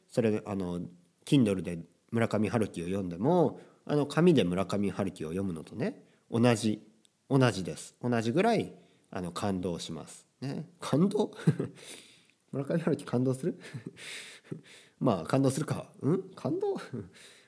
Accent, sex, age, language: native, male, 40-59, Japanese